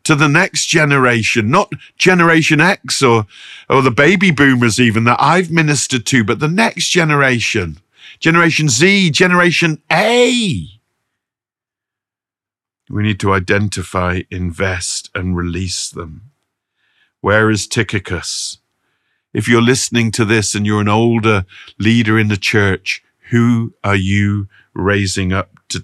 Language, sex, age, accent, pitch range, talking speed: English, male, 50-69, British, 95-125 Hz, 130 wpm